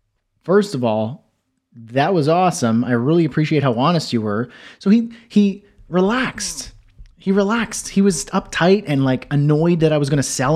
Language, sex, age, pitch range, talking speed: English, male, 30-49, 125-170 Hz, 175 wpm